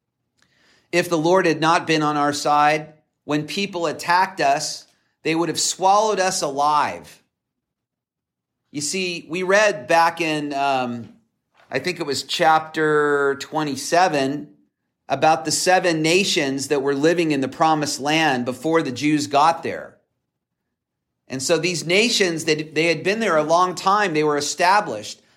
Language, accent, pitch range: English, American, 150-180 Hz